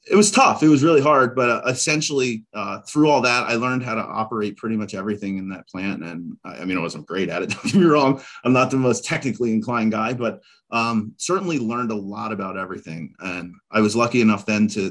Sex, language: male, English